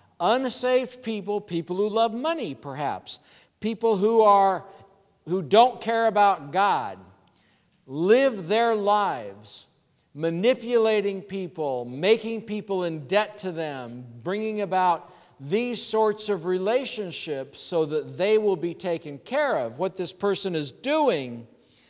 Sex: male